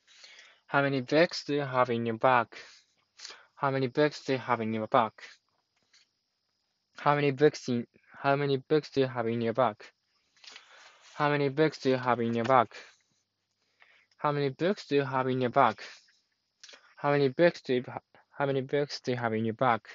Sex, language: male, Japanese